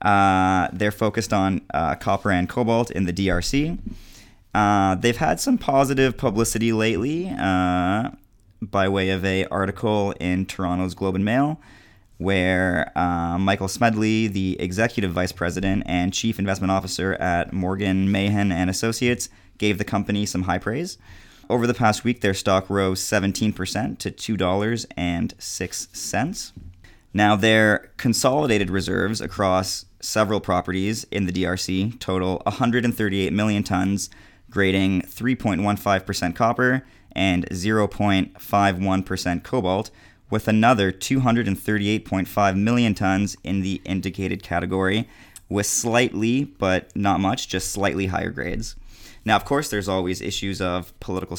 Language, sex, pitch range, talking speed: English, male, 95-110 Hz, 135 wpm